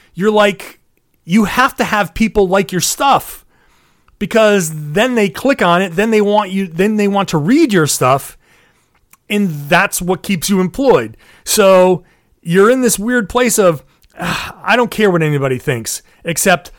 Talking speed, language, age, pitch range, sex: 170 wpm, English, 30-49, 125-190 Hz, male